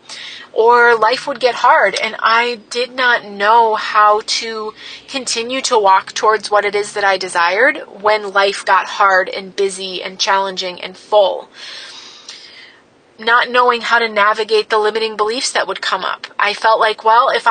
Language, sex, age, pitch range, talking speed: English, female, 30-49, 205-255 Hz, 170 wpm